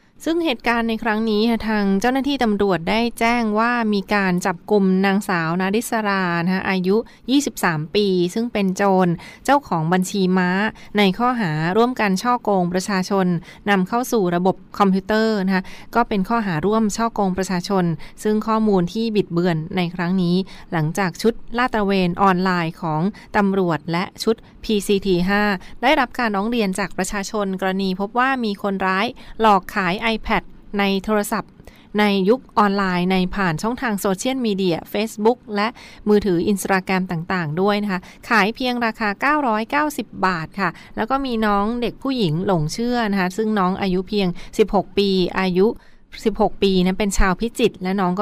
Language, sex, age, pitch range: Thai, female, 20-39, 185-225 Hz